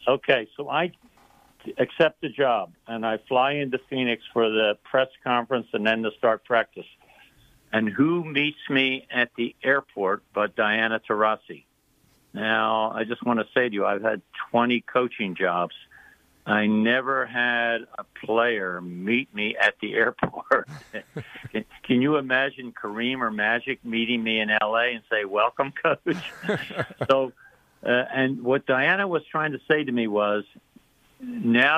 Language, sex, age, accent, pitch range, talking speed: English, male, 60-79, American, 110-140 Hz, 155 wpm